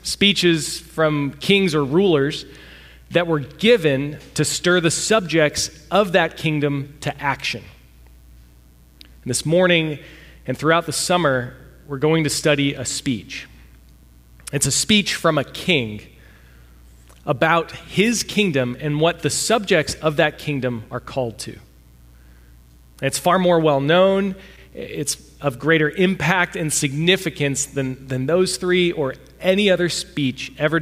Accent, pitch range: American, 120-170 Hz